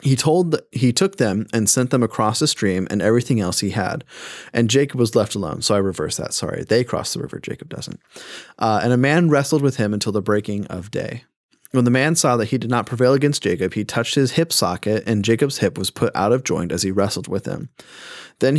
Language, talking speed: English, 240 wpm